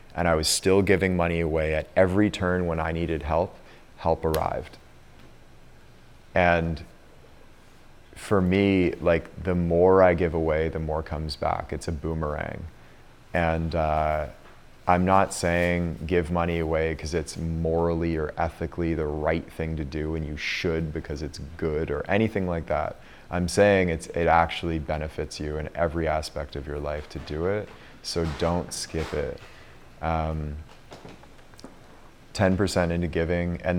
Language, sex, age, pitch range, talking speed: English, male, 30-49, 80-90 Hz, 150 wpm